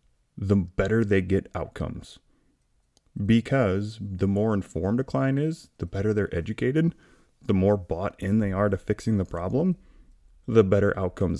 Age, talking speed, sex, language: 30-49, 155 wpm, male, English